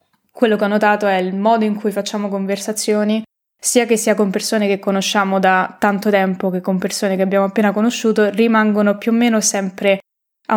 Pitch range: 195-225 Hz